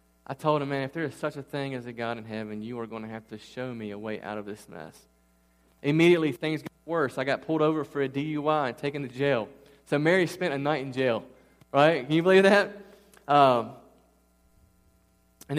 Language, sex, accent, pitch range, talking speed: English, male, American, 105-140 Hz, 225 wpm